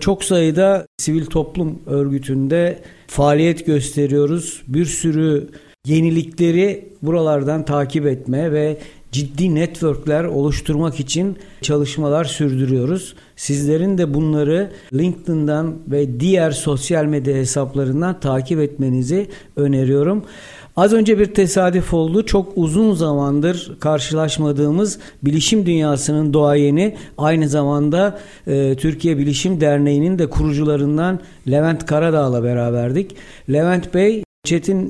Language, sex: Turkish, male